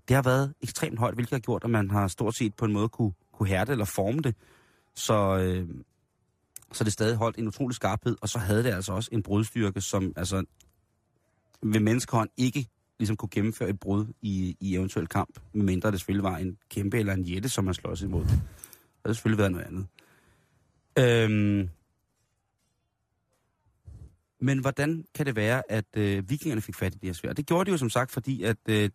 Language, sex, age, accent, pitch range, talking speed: Danish, male, 30-49, native, 100-120 Hz, 195 wpm